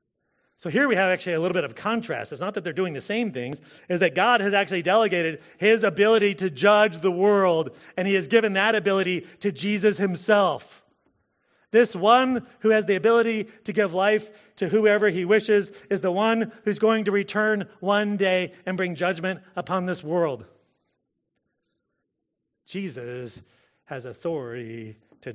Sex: male